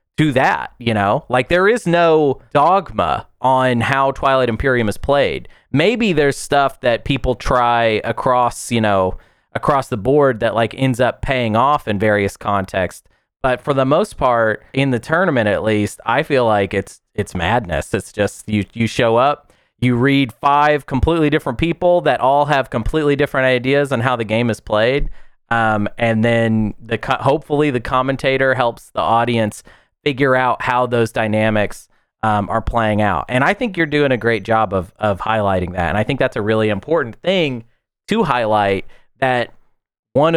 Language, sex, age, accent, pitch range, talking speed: English, male, 30-49, American, 105-135 Hz, 175 wpm